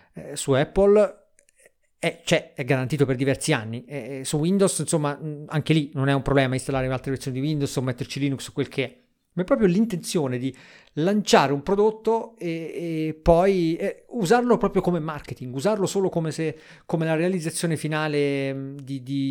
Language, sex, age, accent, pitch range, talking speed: Italian, male, 40-59, native, 135-175 Hz, 180 wpm